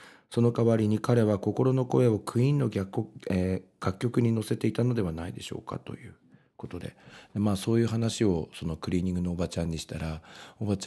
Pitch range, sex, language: 90-120 Hz, male, Japanese